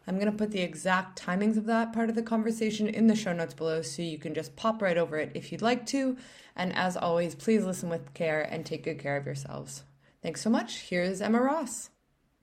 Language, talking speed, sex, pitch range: English, 235 wpm, female, 170-225 Hz